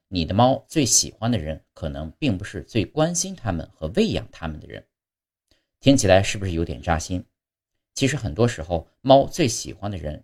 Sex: male